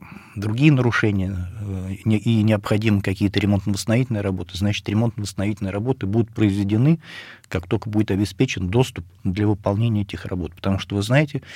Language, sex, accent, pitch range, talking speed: Russian, male, native, 95-115 Hz, 130 wpm